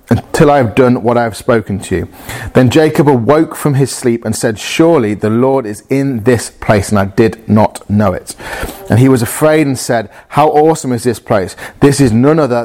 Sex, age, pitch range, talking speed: male, 30-49, 105-130 Hz, 220 wpm